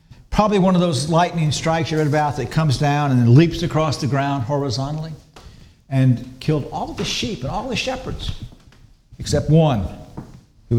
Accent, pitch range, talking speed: American, 115-170 Hz, 165 wpm